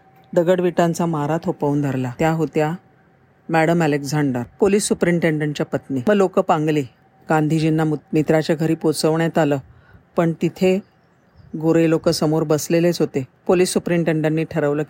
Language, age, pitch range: Marathi, 40-59, 150-190 Hz